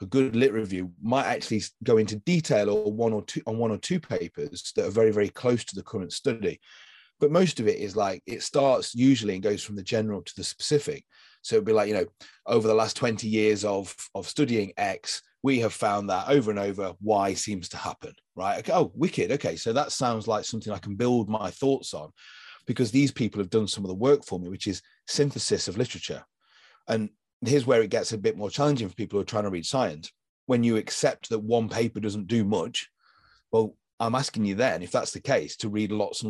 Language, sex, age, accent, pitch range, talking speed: English, male, 30-49, British, 105-125 Hz, 230 wpm